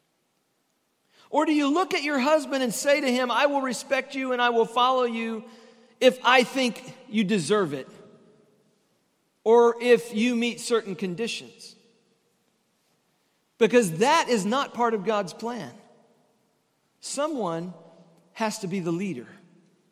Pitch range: 160-225 Hz